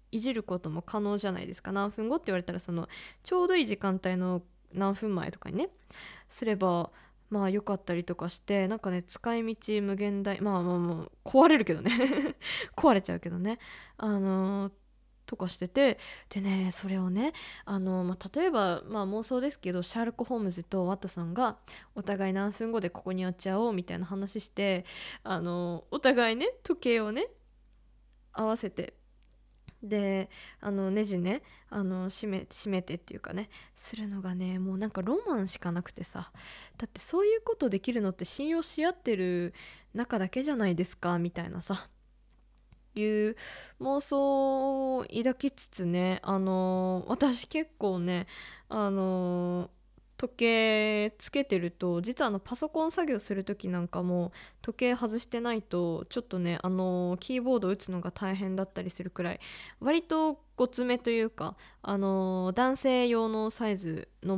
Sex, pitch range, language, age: female, 185-240 Hz, Japanese, 20-39